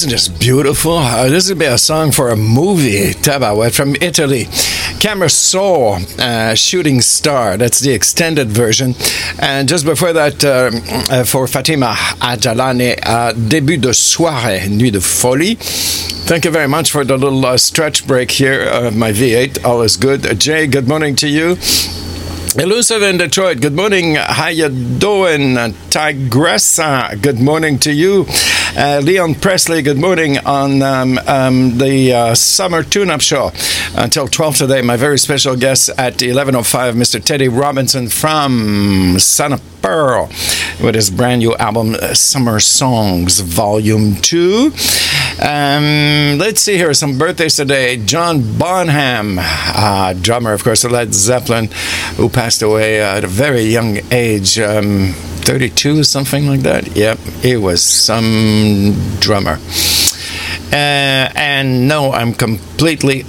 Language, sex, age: English, male, 60-79